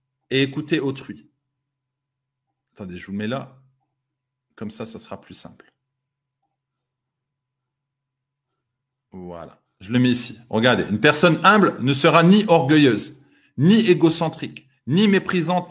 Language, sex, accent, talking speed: French, male, French, 120 wpm